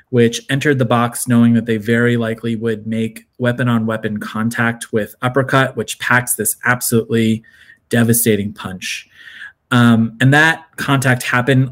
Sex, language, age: male, English, 30-49